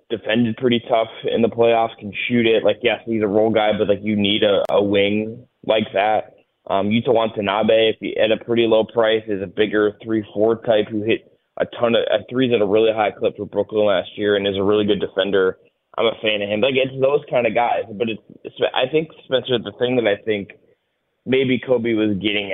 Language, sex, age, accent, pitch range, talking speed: English, male, 20-39, American, 105-120 Hz, 230 wpm